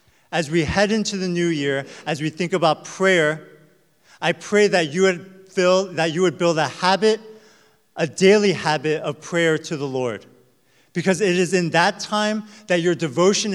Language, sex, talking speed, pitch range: English, male, 175 wpm, 155-190 Hz